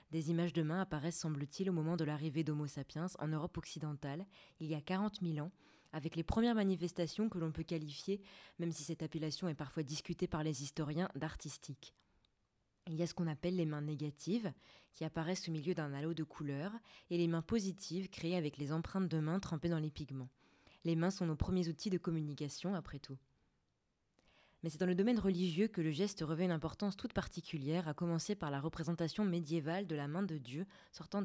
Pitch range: 150-180 Hz